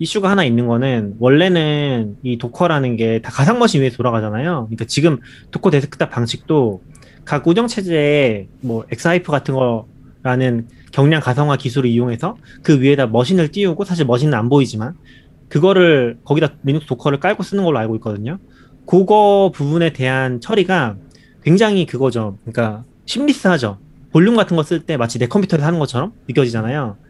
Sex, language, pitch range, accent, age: male, Korean, 125-175 Hz, native, 30-49